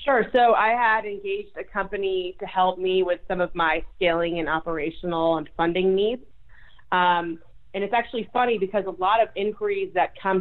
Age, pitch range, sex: 30-49, 170-200 Hz, female